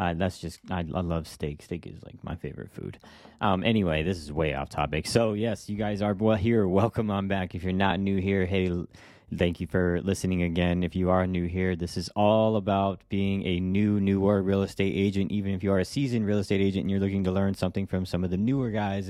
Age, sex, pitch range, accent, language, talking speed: 20-39, male, 90-100 Hz, American, English, 245 wpm